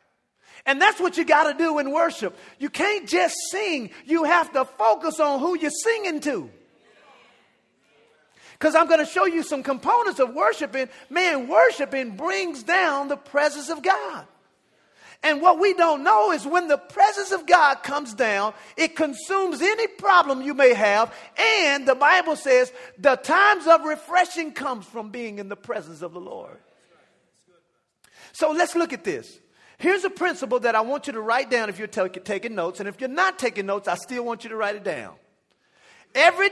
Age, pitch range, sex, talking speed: 40-59, 245-345 Hz, male, 180 wpm